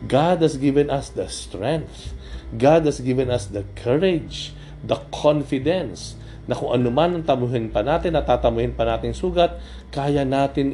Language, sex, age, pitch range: Filipino, male, 50-69, 105-140 Hz